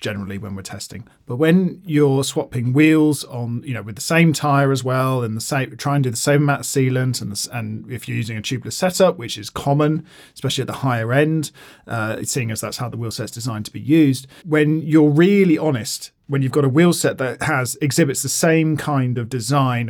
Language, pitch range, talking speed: English, 115-145 Hz, 230 wpm